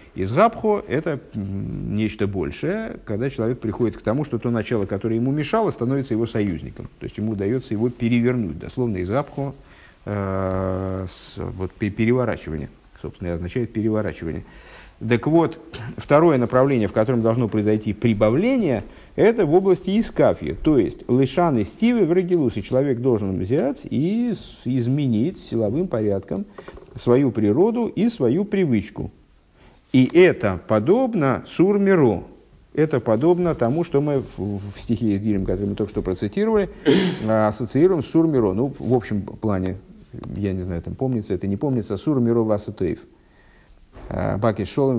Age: 50-69